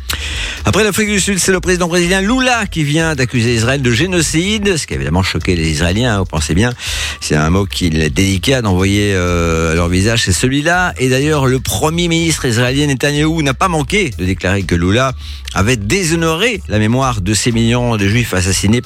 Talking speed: 200 wpm